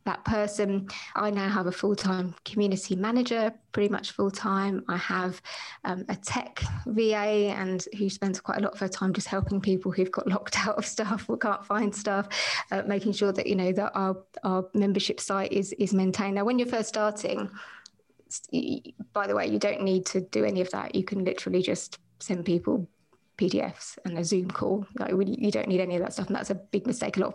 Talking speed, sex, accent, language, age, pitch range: 215 wpm, female, British, English, 20-39, 190-210 Hz